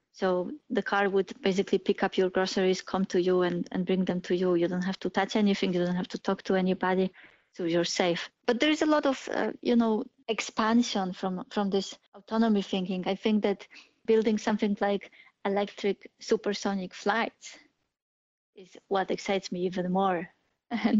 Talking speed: 185 wpm